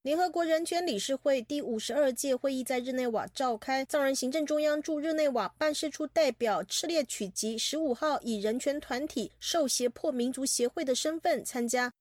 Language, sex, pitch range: Chinese, female, 235-305 Hz